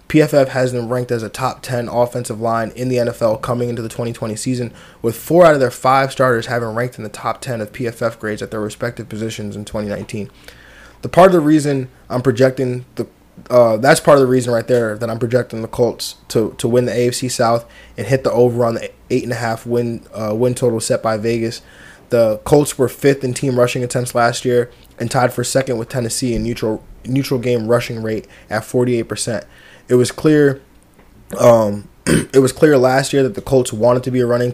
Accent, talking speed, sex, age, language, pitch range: American, 215 wpm, male, 20-39, English, 115-130 Hz